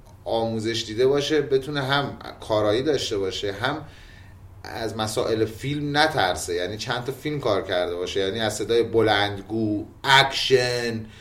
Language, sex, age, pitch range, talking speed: Persian, male, 30-49, 95-120 Hz, 135 wpm